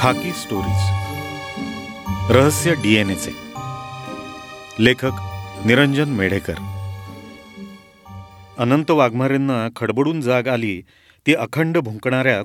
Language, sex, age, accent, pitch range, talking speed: Marathi, male, 40-59, native, 105-155 Hz, 70 wpm